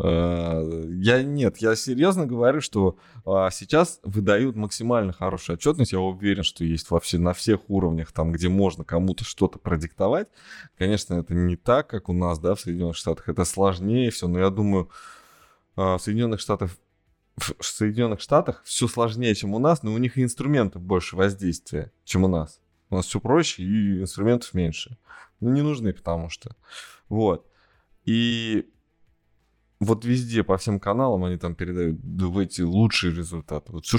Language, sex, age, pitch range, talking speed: Russian, male, 20-39, 85-110 Hz, 155 wpm